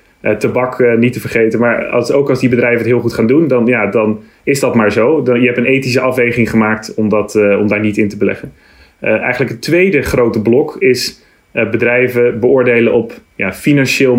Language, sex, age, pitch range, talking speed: English, male, 30-49, 110-125 Hz, 225 wpm